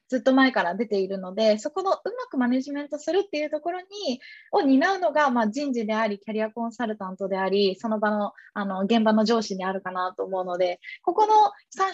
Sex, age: female, 20-39